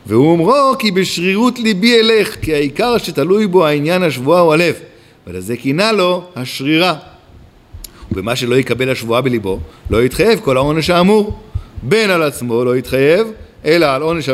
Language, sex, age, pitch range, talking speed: Hebrew, male, 50-69, 125-185 Hz, 150 wpm